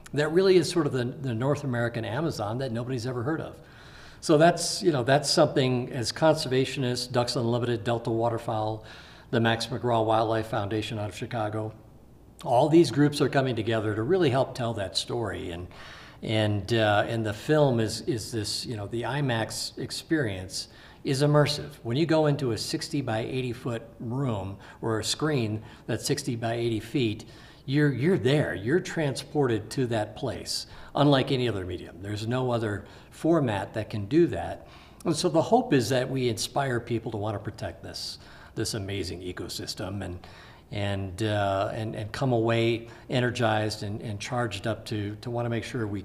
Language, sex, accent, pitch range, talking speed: English, male, American, 110-135 Hz, 180 wpm